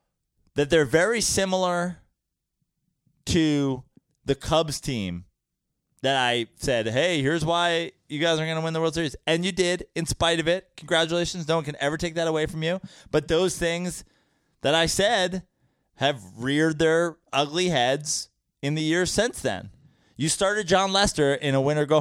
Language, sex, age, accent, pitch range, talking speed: English, male, 20-39, American, 140-180 Hz, 170 wpm